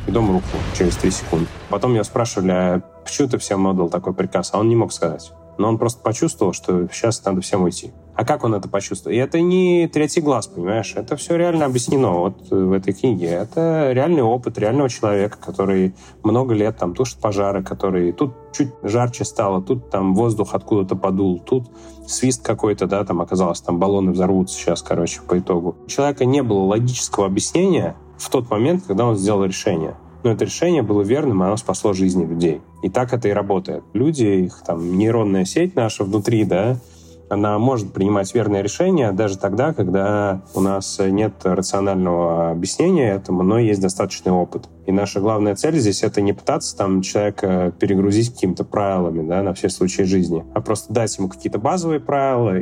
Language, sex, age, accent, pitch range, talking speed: Russian, male, 30-49, native, 95-115 Hz, 185 wpm